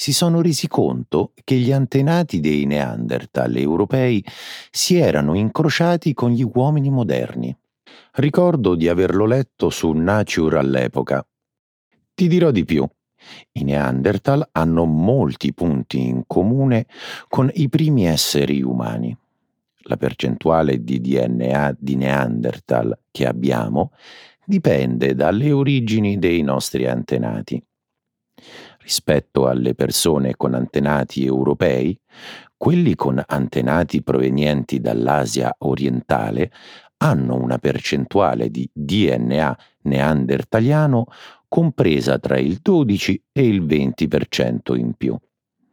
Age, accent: 50-69, native